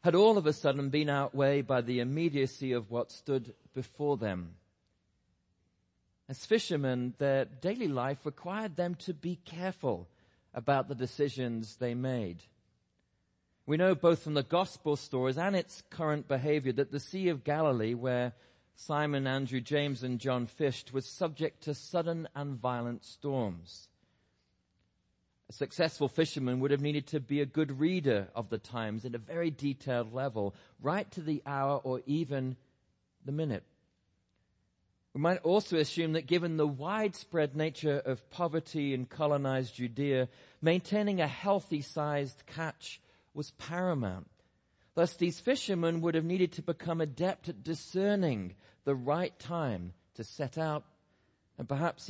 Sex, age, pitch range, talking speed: male, 40-59, 125-160 Hz, 145 wpm